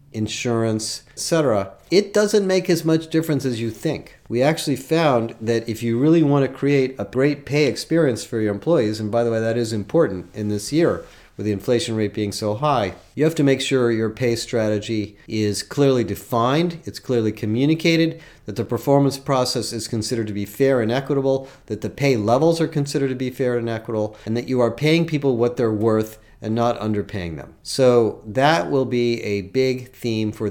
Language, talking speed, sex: English, 200 wpm, male